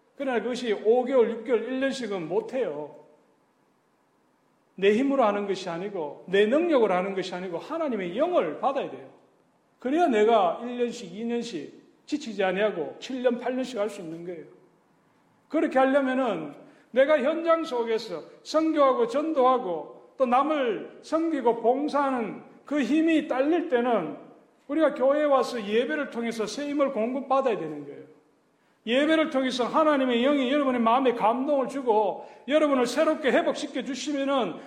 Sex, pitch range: male, 205-280 Hz